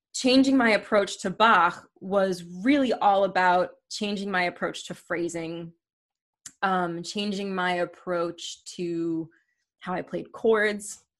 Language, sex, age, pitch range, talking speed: English, female, 20-39, 175-205 Hz, 125 wpm